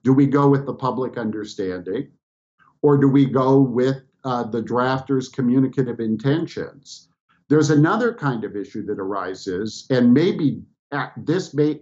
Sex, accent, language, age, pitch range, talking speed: male, American, English, 50-69, 115-145 Hz, 140 wpm